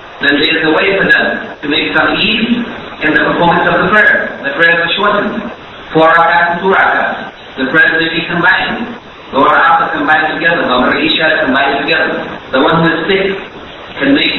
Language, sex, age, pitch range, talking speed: English, male, 50-69, 150-195 Hz, 175 wpm